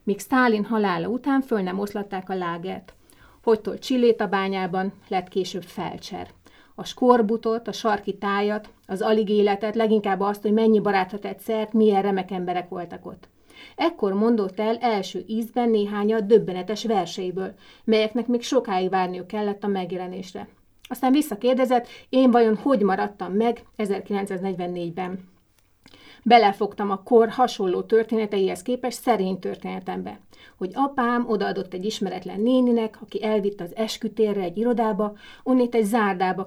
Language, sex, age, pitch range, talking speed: Hungarian, female, 30-49, 195-230 Hz, 135 wpm